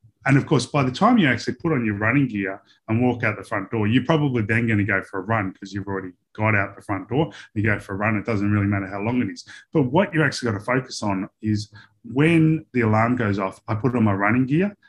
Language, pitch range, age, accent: English, 100-125 Hz, 20-39, Australian